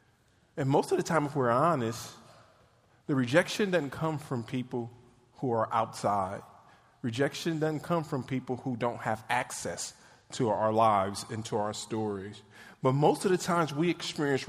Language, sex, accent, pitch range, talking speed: English, male, American, 115-155 Hz, 165 wpm